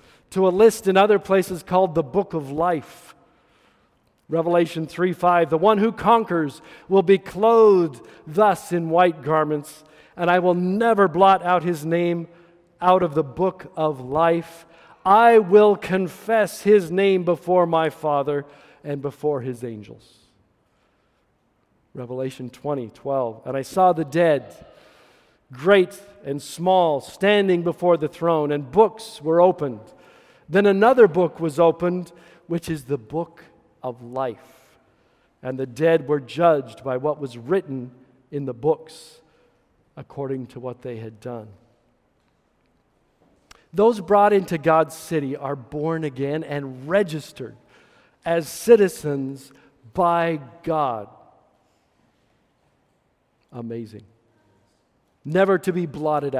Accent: American